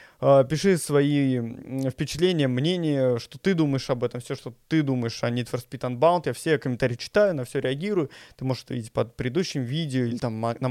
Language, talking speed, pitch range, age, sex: Russian, 195 wpm, 130-170 Hz, 20-39, male